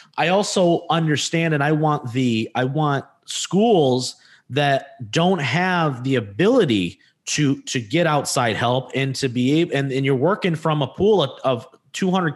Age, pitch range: 30-49, 120-155 Hz